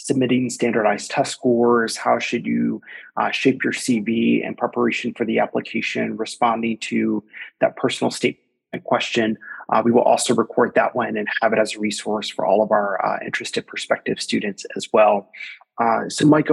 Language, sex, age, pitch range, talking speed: English, male, 20-39, 110-125 Hz, 175 wpm